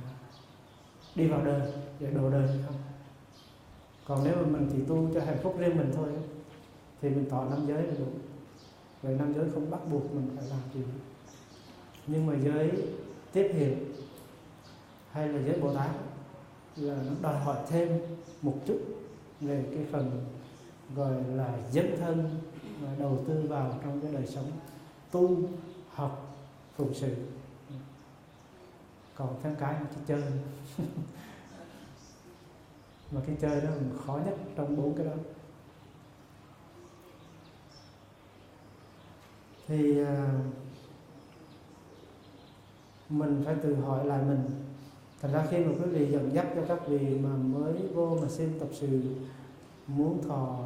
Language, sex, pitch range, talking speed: Vietnamese, male, 135-155 Hz, 135 wpm